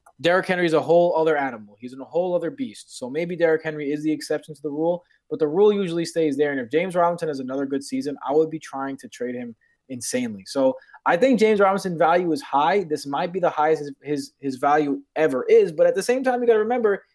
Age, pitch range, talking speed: 20-39, 145-185 Hz, 250 wpm